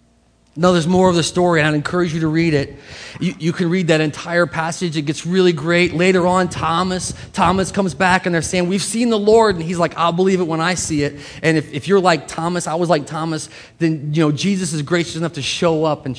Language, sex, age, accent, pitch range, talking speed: English, male, 30-49, American, 130-175 Hz, 250 wpm